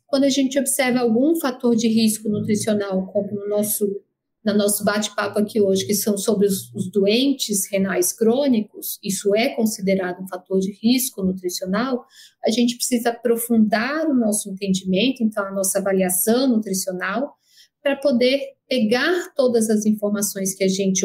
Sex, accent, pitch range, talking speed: female, Brazilian, 195-245 Hz, 150 wpm